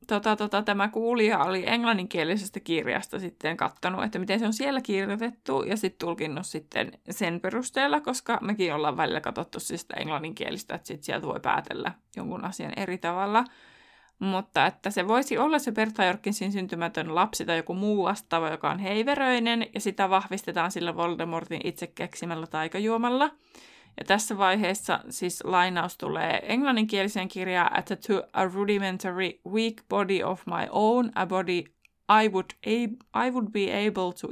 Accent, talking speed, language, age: native, 155 wpm, Finnish, 20-39